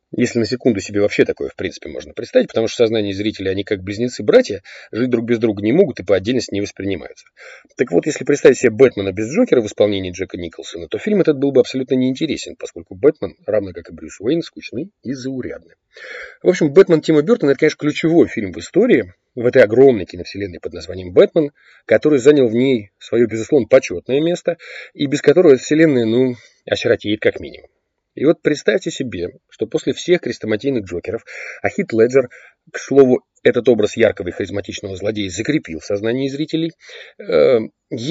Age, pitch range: 30-49, 105-160 Hz